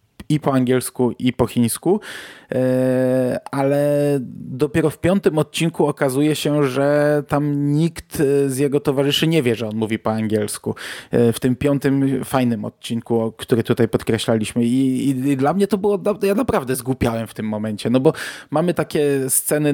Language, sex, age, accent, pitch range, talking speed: Polish, male, 20-39, native, 115-140 Hz, 160 wpm